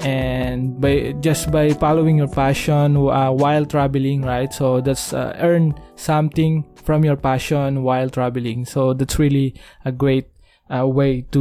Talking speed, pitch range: 155 wpm, 130-150 Hz